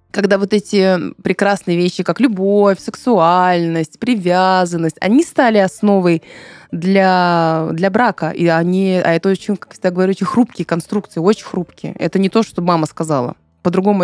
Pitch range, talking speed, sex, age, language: 170-210 Hz, 150 wpm, female, 20-39, Russian